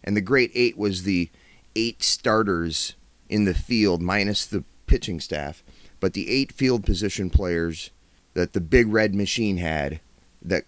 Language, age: English, 30-49